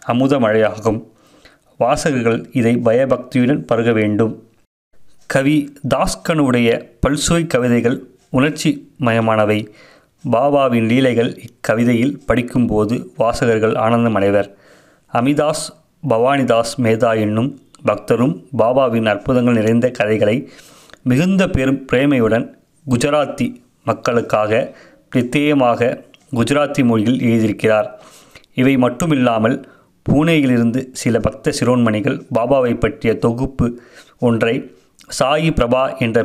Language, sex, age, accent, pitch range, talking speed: Tamil, male, 30-49, native, 115-135 Hz, 90 wpm